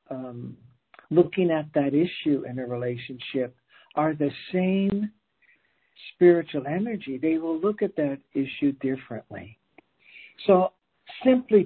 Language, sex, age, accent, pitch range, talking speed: English, male, 60-79, American, 135-180 Hz, 115 wpm